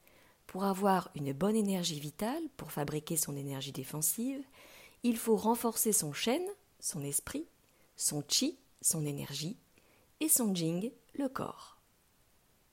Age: 50-69